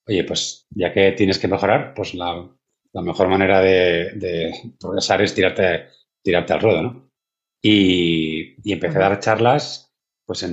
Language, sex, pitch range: Spanish, male, 85-105 Hz